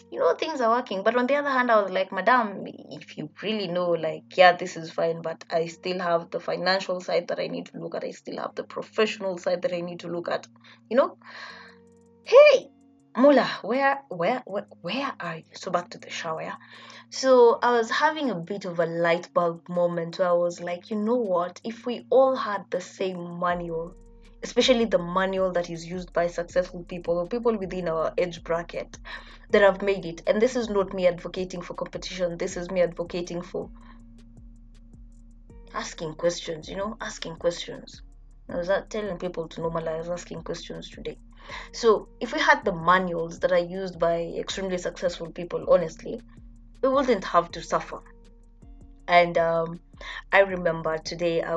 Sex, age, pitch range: female, 20-39, 165-210 Hz